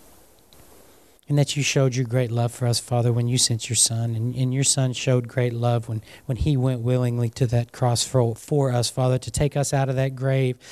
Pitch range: 125-145 Hz